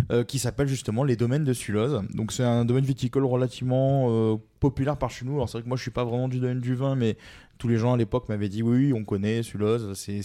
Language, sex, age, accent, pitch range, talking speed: French, male, 20-39, French, 110-140 Hz, 270 wpm